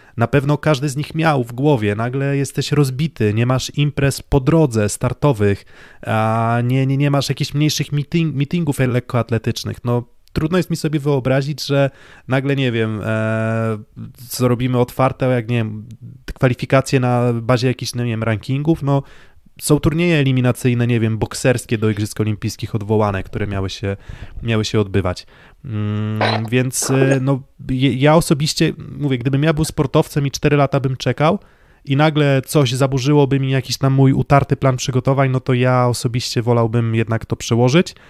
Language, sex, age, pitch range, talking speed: Polish, male, 20-39, 115-140 Hz, 155 wpm